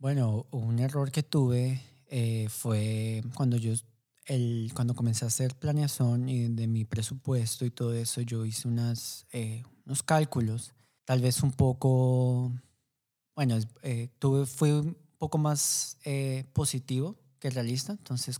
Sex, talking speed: male, 145 wpm